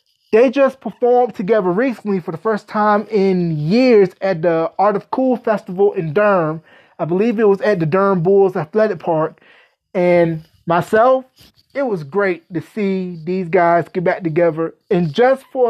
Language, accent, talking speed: English, American, 170 wpm